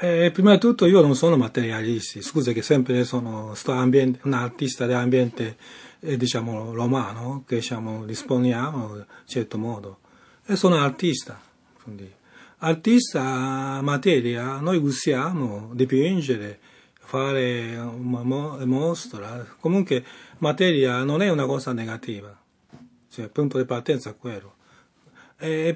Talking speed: 125 wpm